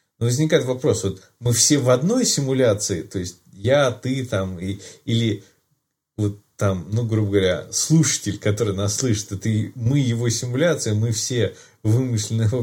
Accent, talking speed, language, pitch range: native, 150 wpm, Russian, 100-130 Hz